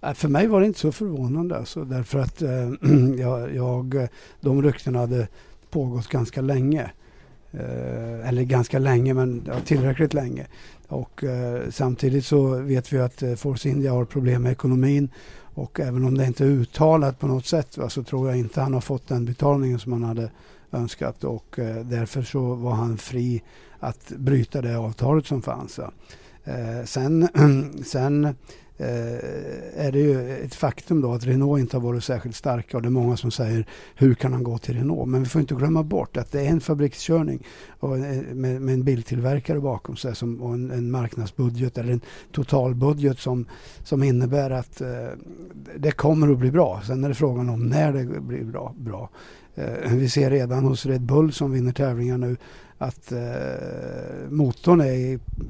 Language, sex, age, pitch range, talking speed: Swedish, male, 60-79, 120-140 Hz, 185 wpm